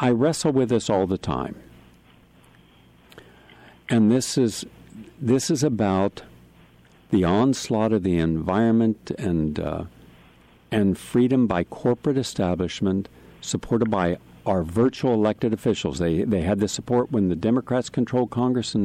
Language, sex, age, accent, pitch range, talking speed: English, male, 60-79, American, 100-125 Hz, 135 wpm